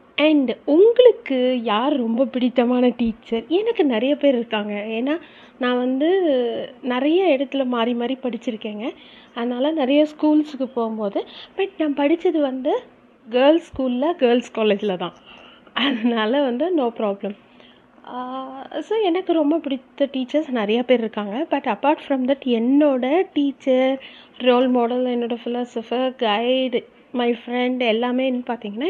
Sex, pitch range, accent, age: female, 240-300 Hz, native, 30-49